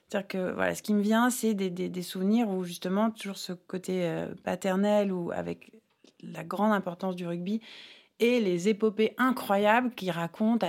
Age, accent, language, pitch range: 30-49, French, French, 180-225 Hz